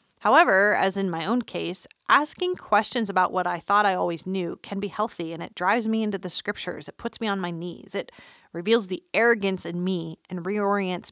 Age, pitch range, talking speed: 30-49, 180-220 Hz, 210 wpm